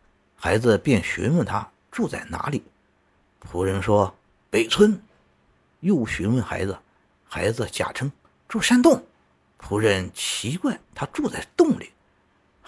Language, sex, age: Chinese, male, 50-69